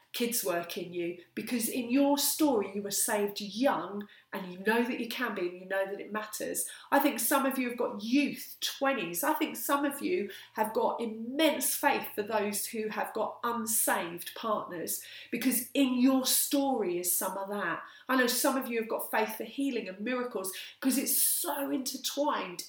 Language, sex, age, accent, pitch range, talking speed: English, female, 30-49, British, 200-265 Hz, 195 wpm